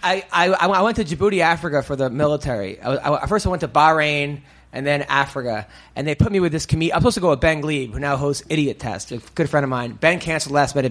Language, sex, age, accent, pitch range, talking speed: English, male, 30-49, American, 140-185 Hz, 270 wpm